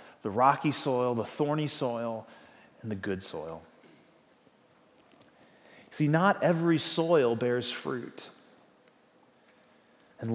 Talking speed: 100 wpm